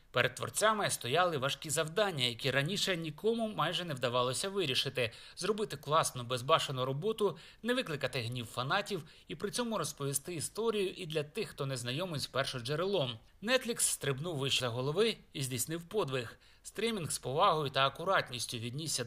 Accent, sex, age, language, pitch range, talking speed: native, male, 30-49, Ukrainian, 130-195 Hz, 150 wpm